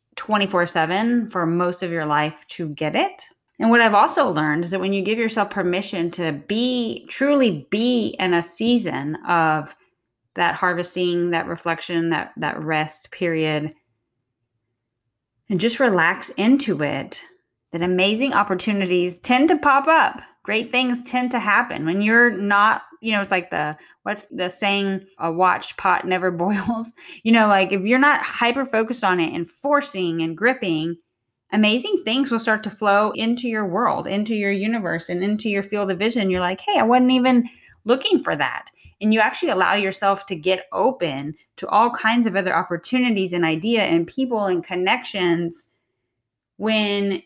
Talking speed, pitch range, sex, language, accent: 170 wpm, 170-230 Hz, female, English, American